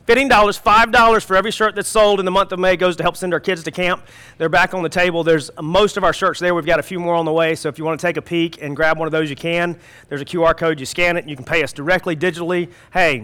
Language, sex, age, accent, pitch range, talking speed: English, male, 30-49, American, 140-175 Hz, 310 wpm